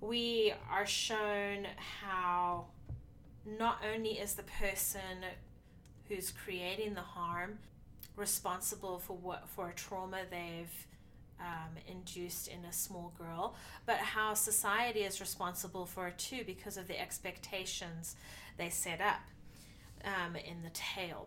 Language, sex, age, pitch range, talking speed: English, female, 30-49, 180-215 Hz, 125 wpm